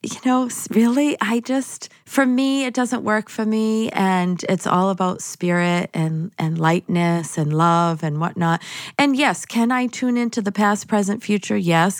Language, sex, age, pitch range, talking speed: English, female, 40-59, 160-200 Hz, 175 wpm